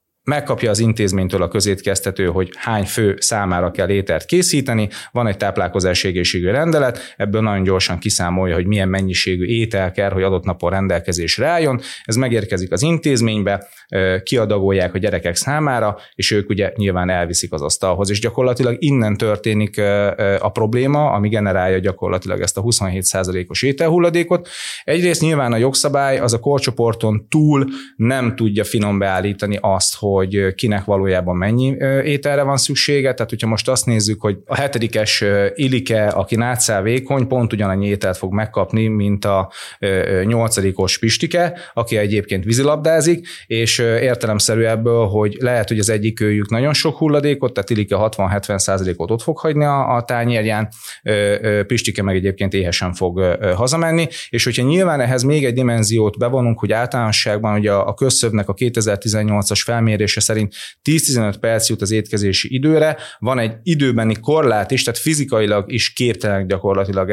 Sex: male